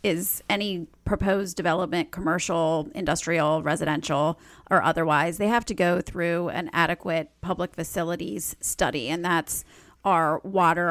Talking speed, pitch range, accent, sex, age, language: 125 wpm, 165-210 Hz, American, female, 30-49, English